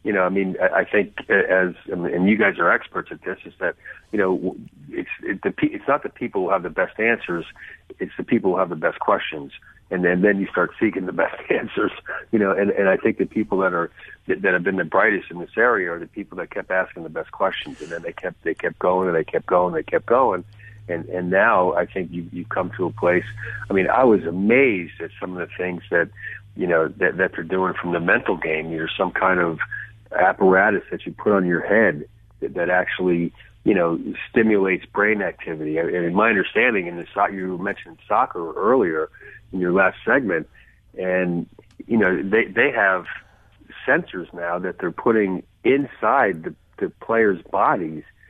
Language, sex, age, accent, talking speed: English, male, 50-69, American, 210 wpm